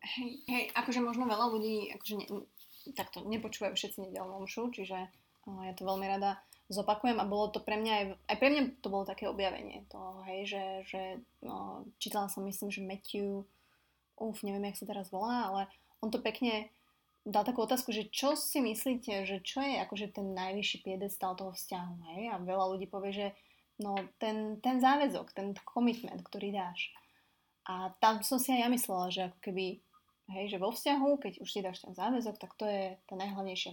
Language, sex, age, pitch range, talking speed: Slovak, female, 20-39, 195-225 Hz, 190 wpm